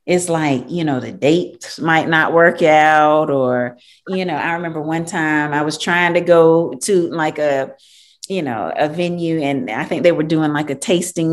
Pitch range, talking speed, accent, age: 155-220 Hz, 200 wpm, American, 30-49